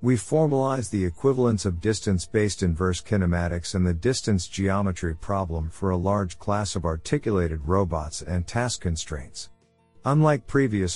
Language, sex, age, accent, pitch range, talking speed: English, male, 50-69, American, 90-115 Hz, 135 wpm